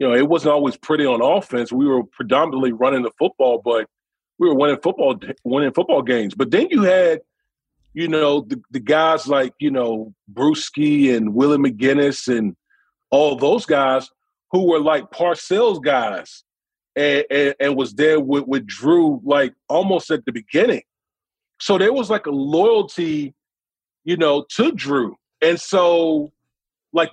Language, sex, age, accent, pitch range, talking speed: English, male, 40-59, American, 135-190 Hz, 160 wpm